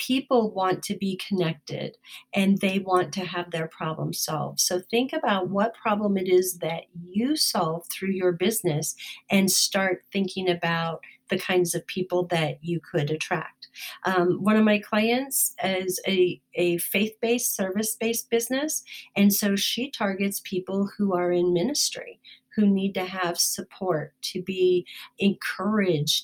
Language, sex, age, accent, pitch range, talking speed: English, female, 40-59, American, 170-205 Hz, 150 wpm